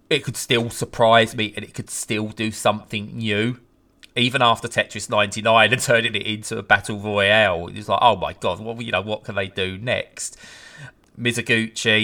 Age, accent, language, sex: 20-39, British, English, male